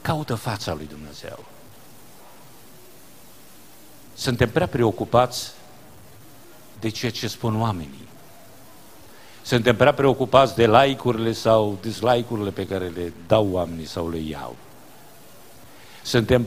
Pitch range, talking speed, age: 95-125 Hz, 100 wpm, 50-69